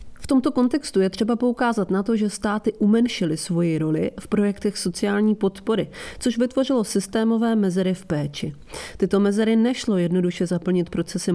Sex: female